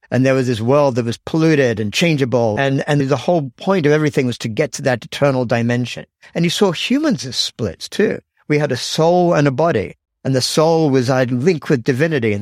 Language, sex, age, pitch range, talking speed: English, male, 50-69, 125-160 Hz, 225 wpm